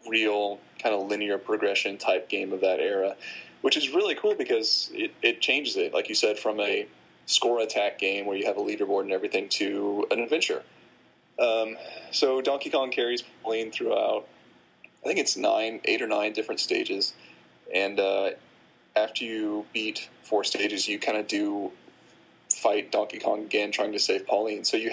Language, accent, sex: English, American, male